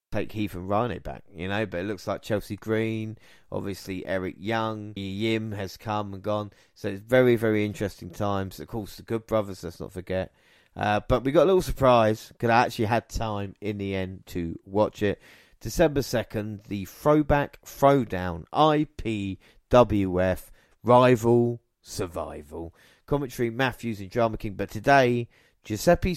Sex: male